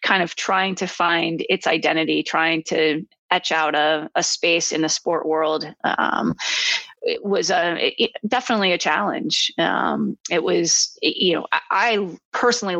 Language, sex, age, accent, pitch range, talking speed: English, female, 20-39, American, 160-205 Hz, 160 wpm